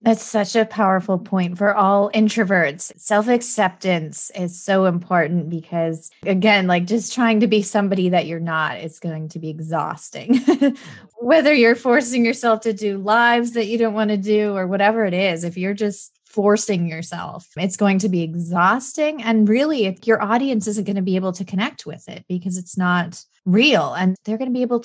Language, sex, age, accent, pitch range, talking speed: English, female, 20-39, American, 175-225 Hz, 190 wpm